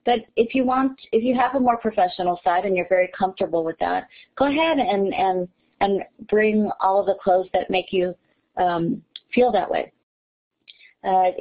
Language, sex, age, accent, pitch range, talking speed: English, female, 40-59, American, 180-215 Hz, 185 wpm